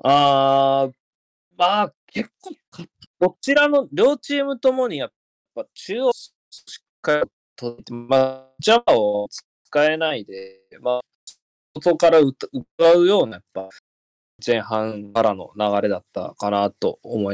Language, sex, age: Japanese, male, 20-39